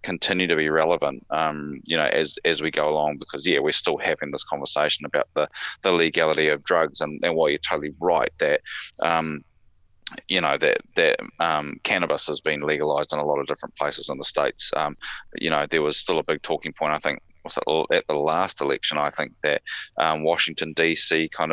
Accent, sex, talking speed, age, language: Australian, male, 210 wpm, 20-39, English